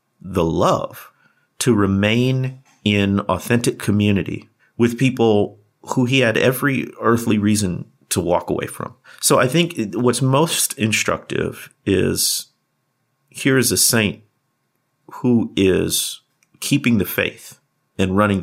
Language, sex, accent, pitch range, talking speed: English, male, American, 100-125 Hz, 120 wpm